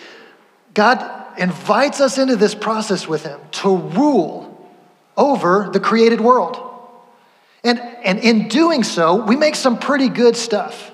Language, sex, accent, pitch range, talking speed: English, male, American, 185-240 Hz, 135 wpm